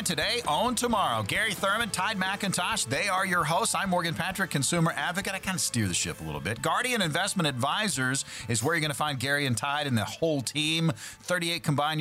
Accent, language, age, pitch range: American, English, 40-59, 125-170 Hz